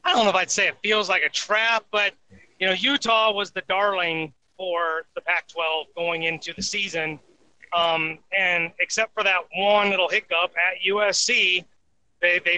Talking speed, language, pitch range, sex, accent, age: 170 wpm, English, 170-200 Hz, male, American, 30-49